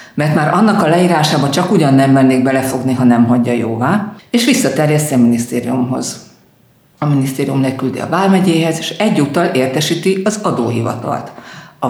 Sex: female